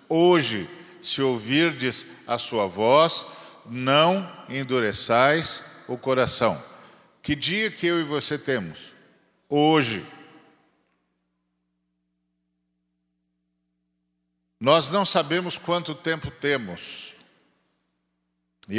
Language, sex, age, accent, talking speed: Portuguese, male, 50-69, Brazilian, 80 wpm